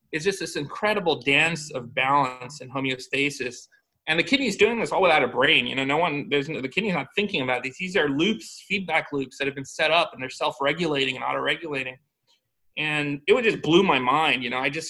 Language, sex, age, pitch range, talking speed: English, male, 30-49, 135-160 Hz, 225 wpm